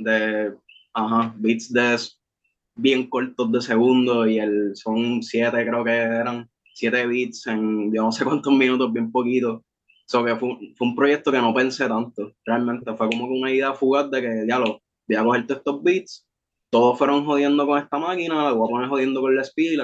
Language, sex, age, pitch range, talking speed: Spanish, male, 20-39, 115-135 Hz, 195 wpm